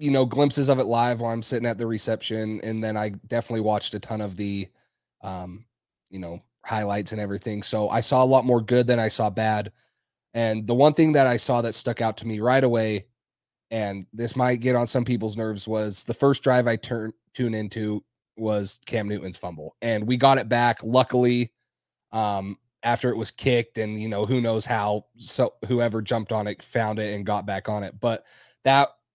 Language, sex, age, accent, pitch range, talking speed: English, male, 30-49, American, 110-125 Hz, 210 wpm